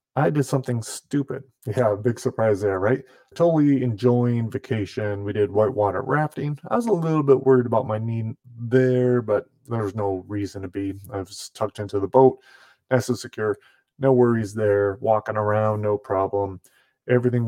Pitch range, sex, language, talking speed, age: 105-130 Hz, male, English, 170 wpm, 30-49